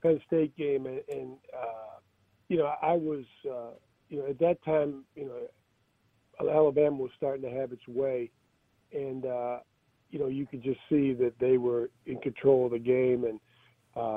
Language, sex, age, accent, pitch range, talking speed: English, male, 40-59, American, 125-150 Hz, 180 wpm